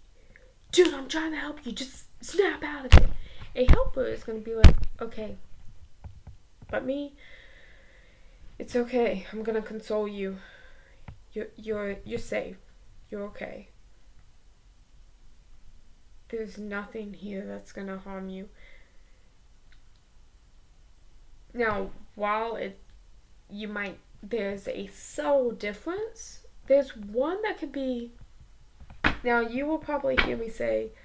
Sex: female